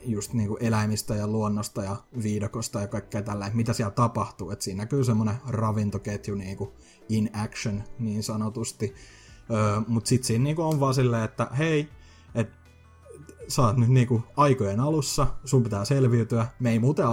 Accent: native